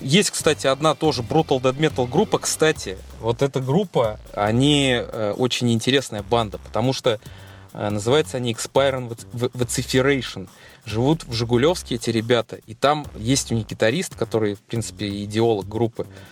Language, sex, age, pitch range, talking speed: Russian, male, 20-39, 115-145 Hz, 140 wpm